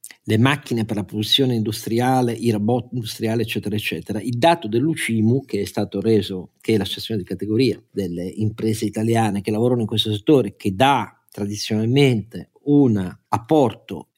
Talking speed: 150 wpm